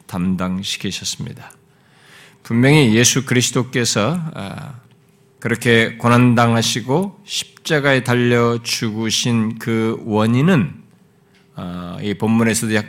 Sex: male